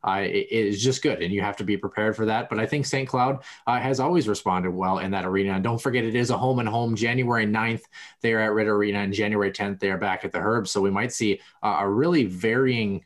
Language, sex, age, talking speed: English, male, 20-39, 270 wpm